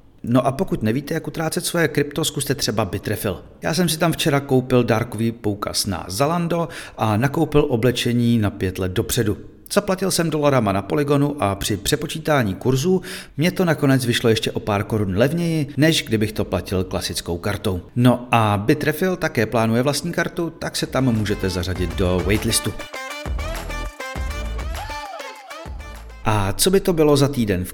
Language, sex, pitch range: Czech, male, 100-145 Hz